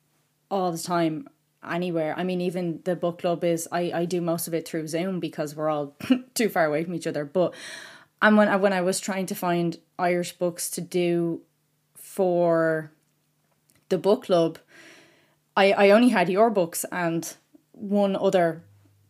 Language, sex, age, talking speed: English, female, 20-39, 175 wpm